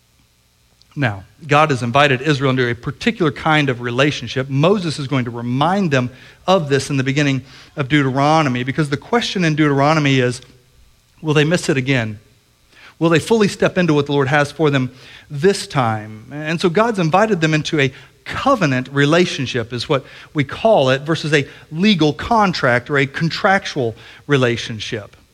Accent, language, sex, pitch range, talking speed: American, English, male, 130-180 Hz, 165 wpm